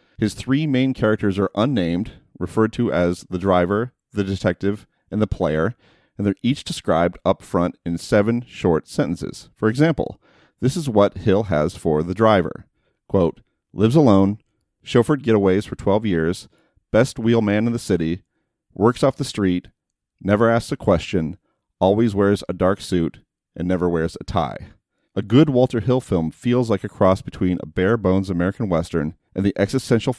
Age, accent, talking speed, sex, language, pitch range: 40-59, American, 170 wpm, male, English, 90-115 Hz